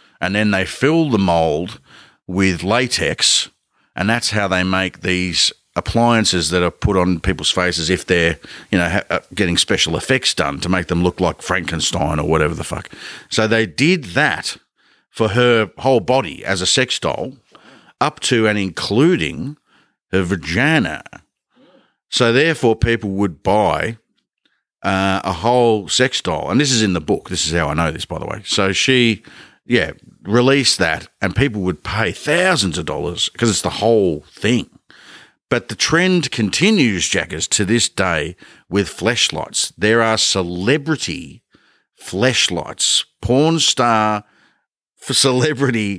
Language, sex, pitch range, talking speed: English, male, 90-120 Hz, 150 wpm